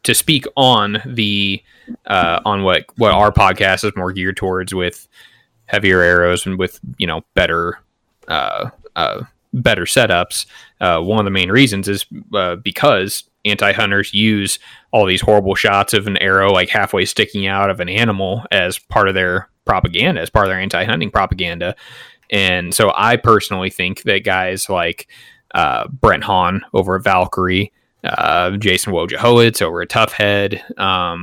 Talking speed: 165 wpm